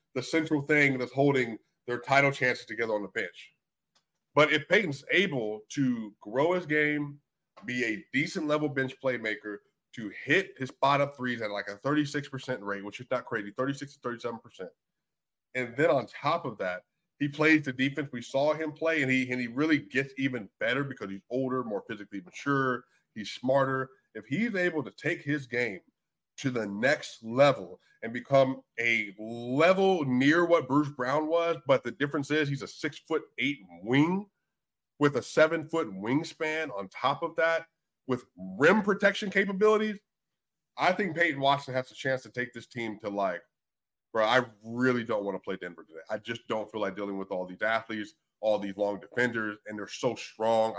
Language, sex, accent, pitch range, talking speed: English, male, American, 110-150 Hz, 185 wpm